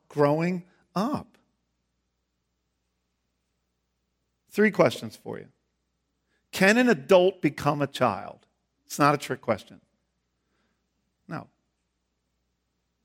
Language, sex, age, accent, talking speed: English, male, 50-69, American, 85 wpm